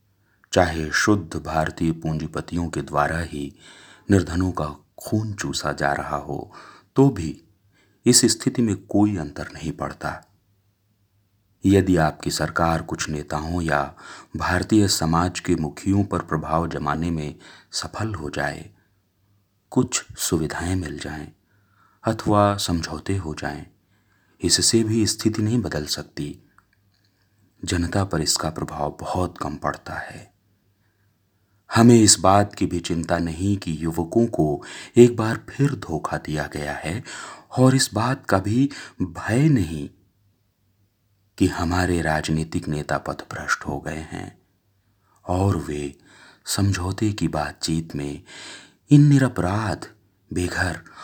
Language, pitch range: Hindi, 80-100 Hz